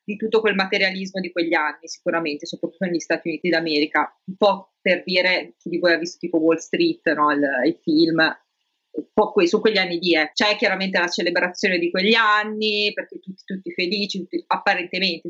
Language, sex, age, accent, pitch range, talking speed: Italian, female, 30-49, native, 180-235 Hz, 190 wpm